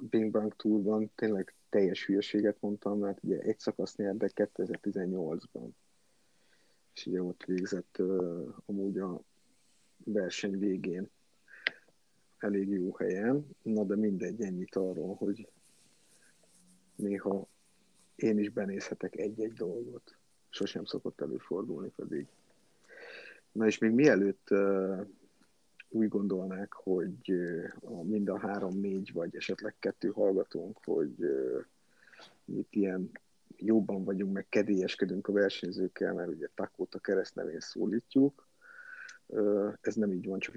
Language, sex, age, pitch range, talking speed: Hungarian, male, 50-69, 95-105 Hz, 110 wpm